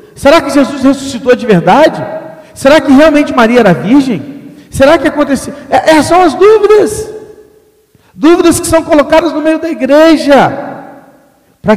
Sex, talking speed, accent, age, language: male, 150 wpm, Brazilian, 40-59, Portuguese